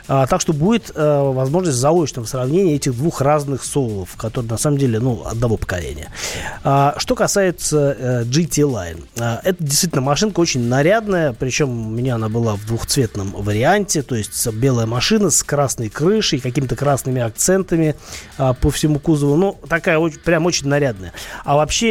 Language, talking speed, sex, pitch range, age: Russian, 170 wpm, male, 125-165 Hz, 30-49